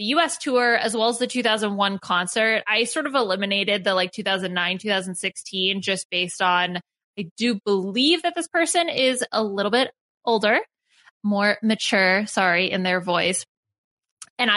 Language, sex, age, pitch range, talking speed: English, female, 20-39, 195-250 Hz, 155 wpm